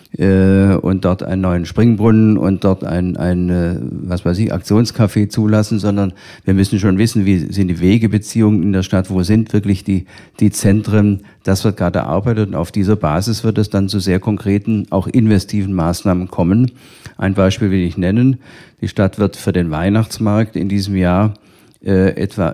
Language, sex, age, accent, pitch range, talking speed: German, male, 50-69, German, 95-110 Hz, 175 wpm